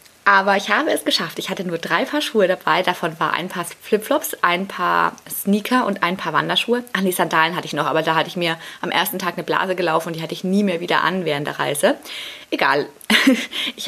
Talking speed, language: 240 wpm, German